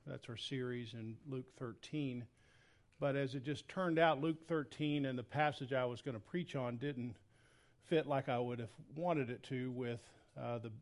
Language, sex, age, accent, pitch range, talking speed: English, male, 50-69, American, 115-140 Hz, 195 wpm